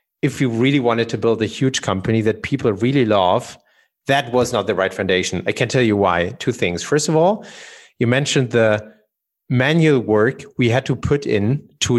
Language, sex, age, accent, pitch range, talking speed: English, male, 30-49, German, 110-150 Hz, 200 wpm